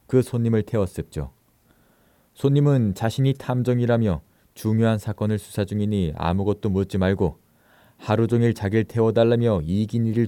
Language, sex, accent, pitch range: Korean, male, native, 95-115 Hz